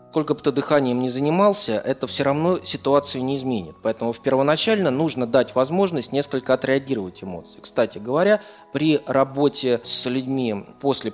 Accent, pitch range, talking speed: native, 115-145 Hz, 145 wpm